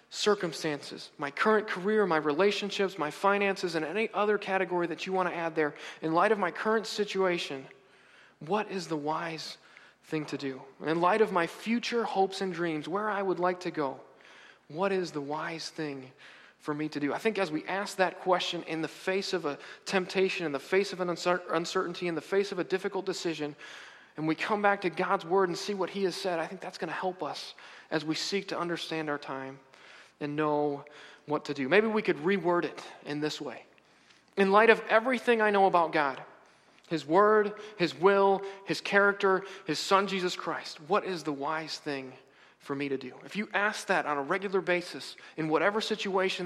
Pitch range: 155-195 Hz